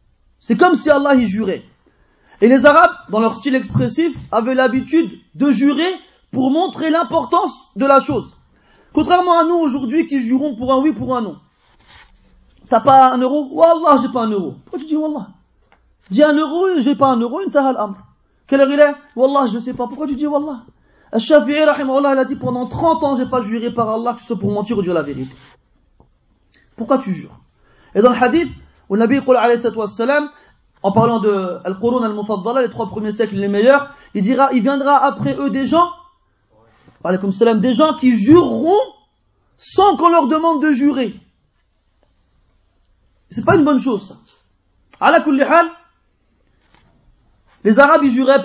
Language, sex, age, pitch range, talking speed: French, male, 40-59, 225-300 Hz, 170 wpm